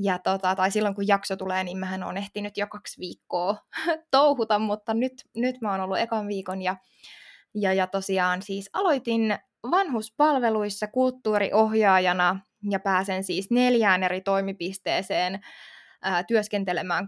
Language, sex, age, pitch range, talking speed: Finnish, female, 20-39, 195-225 Hz, 135 wpm